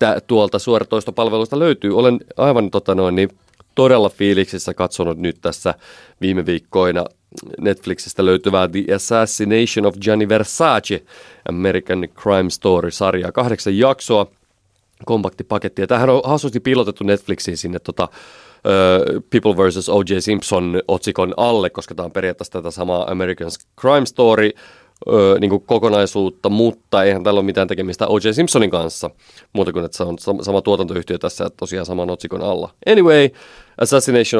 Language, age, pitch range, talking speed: Finnish, 30-49, 90-105 Hz, 140 wpm